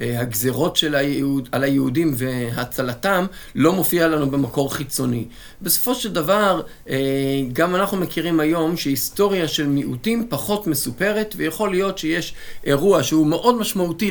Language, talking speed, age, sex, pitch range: Hebrew, 125 wpm, 50-69, male, 140-195 Hz